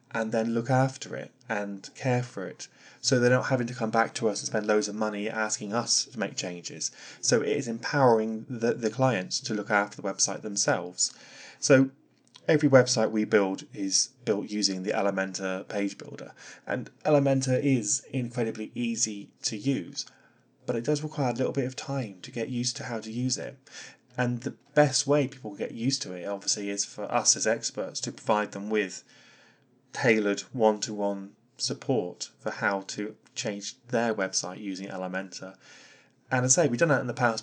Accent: British